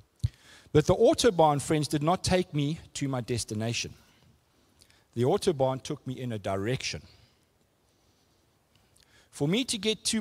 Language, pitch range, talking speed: English, 115-175 Hz, 135 wpm